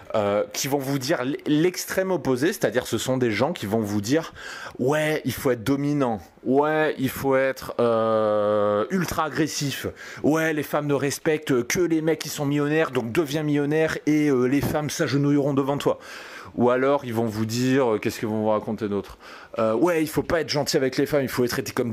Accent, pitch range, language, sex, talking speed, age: French, 110-145 Hz, French, male, 205 wpm, 20-39